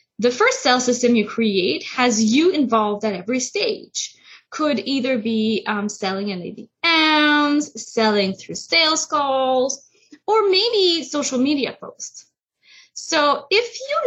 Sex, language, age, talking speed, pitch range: female, English, 10-29, 130 wpm, 230-335 Hz